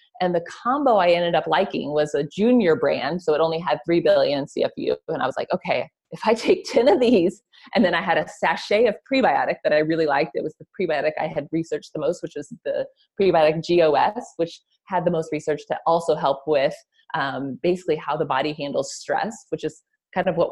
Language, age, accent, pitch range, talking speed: English, 30-49, American, 150-215 Hz, 220 wpm